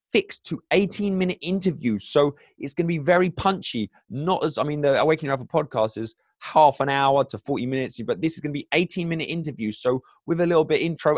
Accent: British